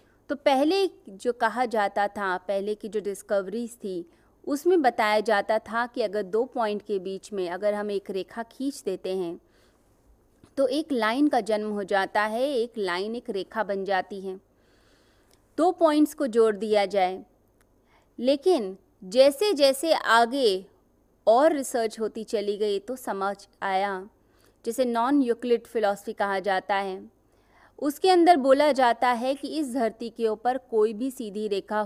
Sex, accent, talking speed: female, native, 155 wpm